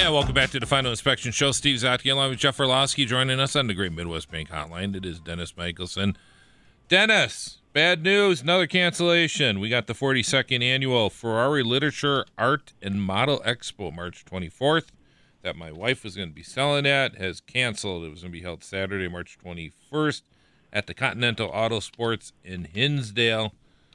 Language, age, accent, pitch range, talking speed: English, 40-59, American, 95-130 Hz, 175 wpm